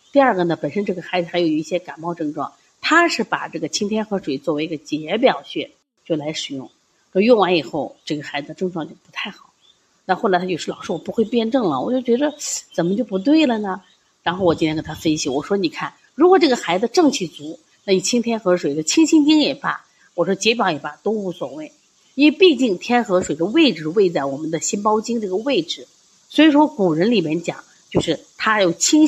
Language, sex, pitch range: Chinese, female, 165-255 Hz